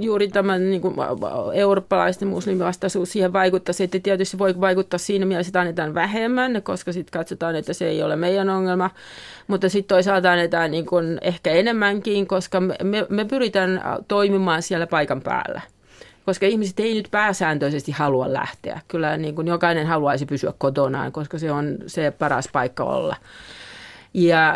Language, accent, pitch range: Finnish, native, 160-190 Hz